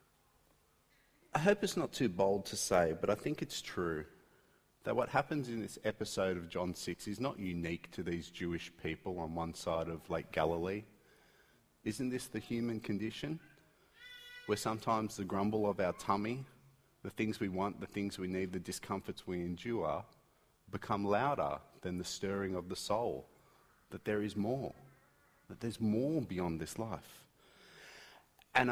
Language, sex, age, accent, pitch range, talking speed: English, male, 30-49, Australian, 95-120 Hz, 165 wpm